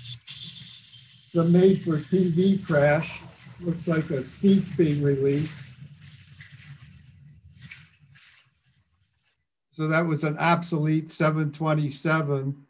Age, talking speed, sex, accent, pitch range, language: 60-79, 70 wpm, male, American, 135-155 Hz, English